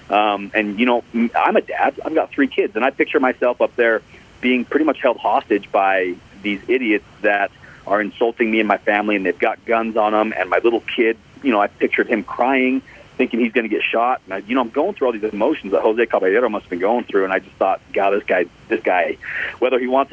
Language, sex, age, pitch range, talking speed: English, male, 40-59, 100-120 Hz, 250 wpm